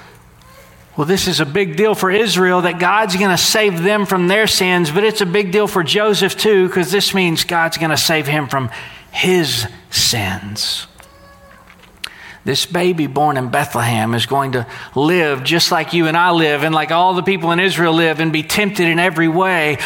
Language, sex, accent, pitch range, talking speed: English, male, American, 145-185 Hz, 190 wpm